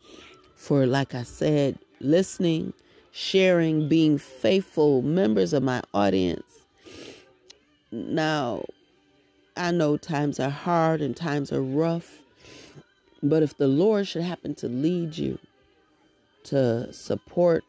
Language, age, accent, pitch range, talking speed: English, 40-59, American, 120-150 Hz, 110 wpm